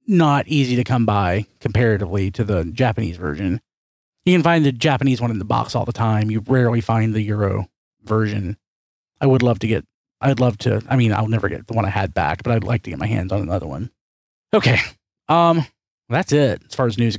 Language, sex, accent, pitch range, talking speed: English, male, American, 105-135 Hz, 225 wpm